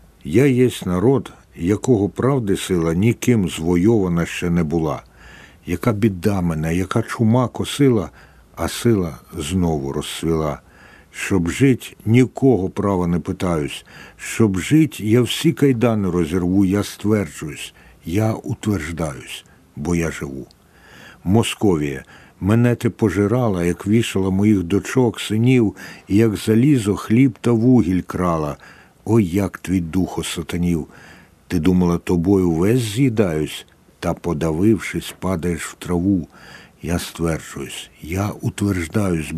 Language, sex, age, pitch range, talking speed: Ukrainian, male, 60-79, 85-115 Hz, 115 wpm